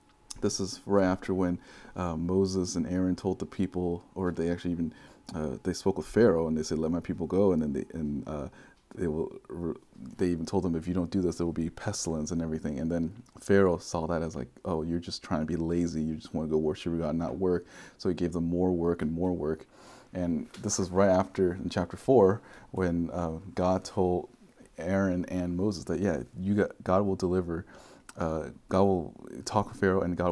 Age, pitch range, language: 30-49, 80-95 Hz, English